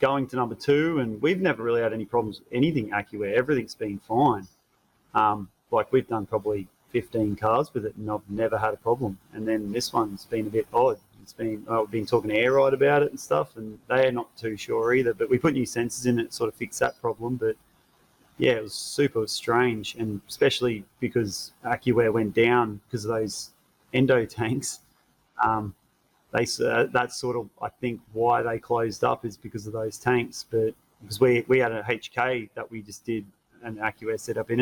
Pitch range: 105-120 Hz